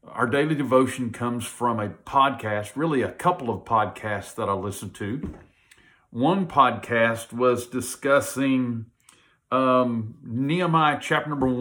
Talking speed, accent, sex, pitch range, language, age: 125 wpm, American, male, 105-140 Hz, English, 50-69